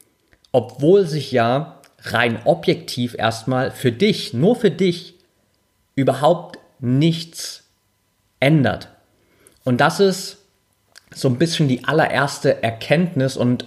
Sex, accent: male, German